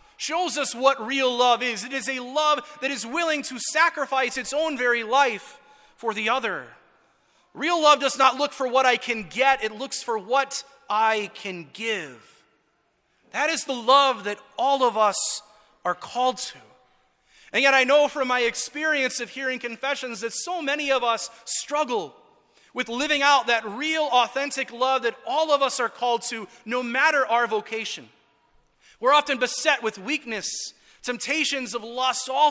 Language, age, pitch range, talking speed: English, 30-49, 225-280 Hz, 170 wpm